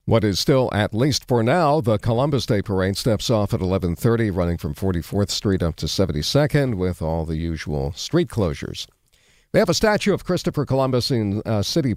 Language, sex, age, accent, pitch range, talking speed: English, male, 50-69, American, 90-125 Hz, 190 wpm